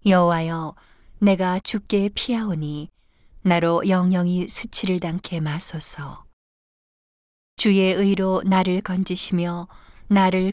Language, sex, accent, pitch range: Korean, female, native, 165-195 Hz